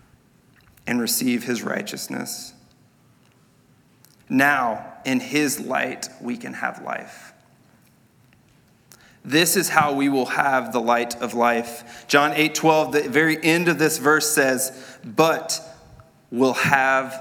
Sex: male